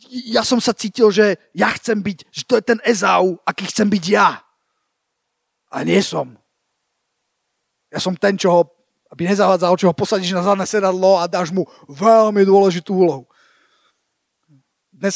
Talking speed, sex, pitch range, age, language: 150 wpm, male, 180-230 Hz, 30-49, Slovak